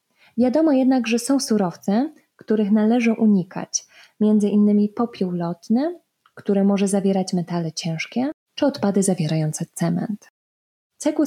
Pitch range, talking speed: 190-240 Hz, 110 wpm